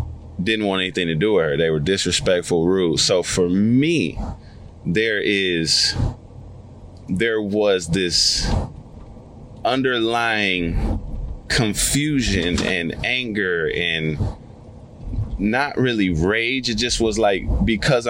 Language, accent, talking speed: English, American, 105 wpm